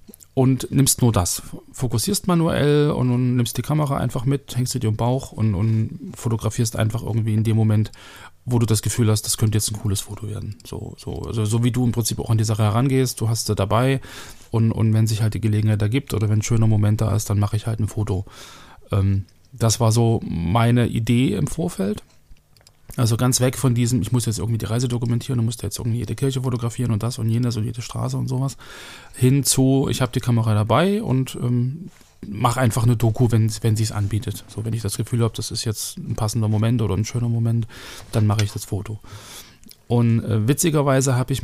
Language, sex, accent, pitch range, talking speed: German, male, German, 110-125 Hz, 225 wpm